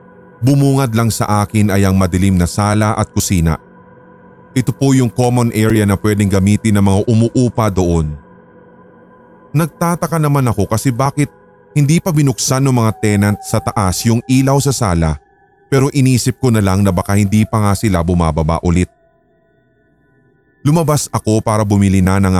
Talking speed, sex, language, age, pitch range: 160 wpm, male, Filipino, 30-49, 100-145 Hz